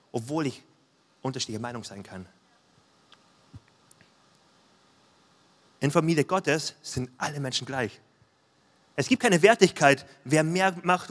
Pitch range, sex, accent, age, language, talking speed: 125-170 Hz, male, German, 30-49, German, 110 wpm